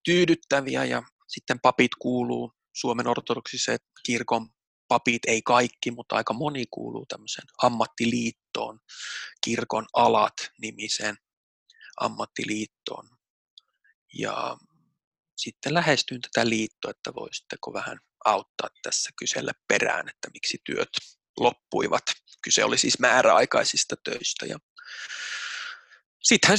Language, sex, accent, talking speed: Finnish, male, native, 100 wpm